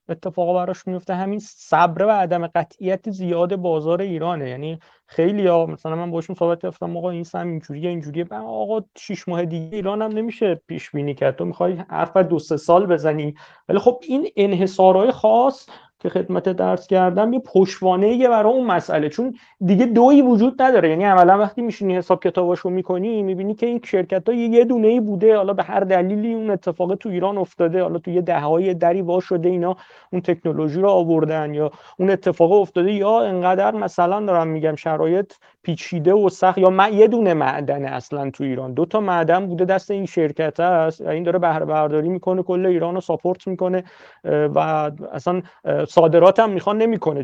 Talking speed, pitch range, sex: 180 wpm, 165-195 Hz, male